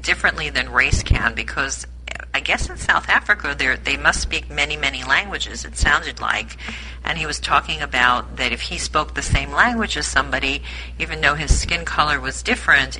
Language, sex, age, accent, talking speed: English, female, 50-69, American, 185 wpm